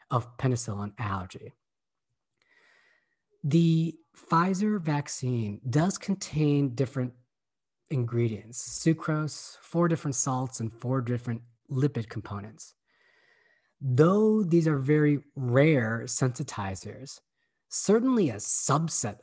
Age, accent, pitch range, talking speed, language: 40-59, American, 115-160 Hz, 85 wpm, English